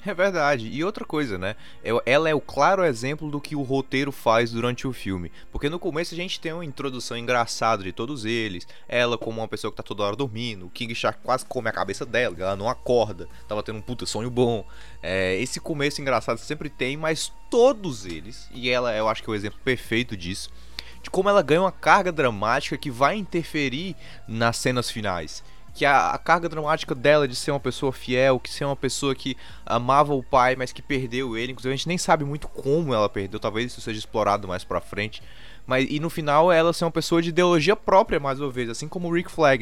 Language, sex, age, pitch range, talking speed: Portuguese, male, 20-39, 105-145 Hz, 225 wpm